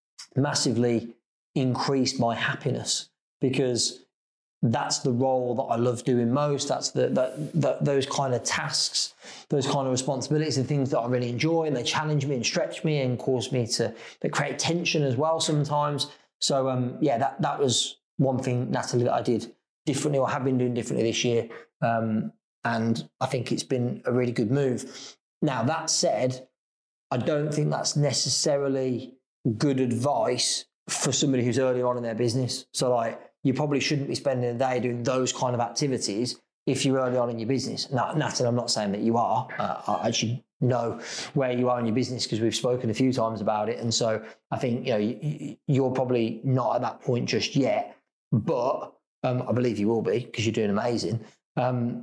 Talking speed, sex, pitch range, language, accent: 190 wpm, male, 120-140 Hz, English, British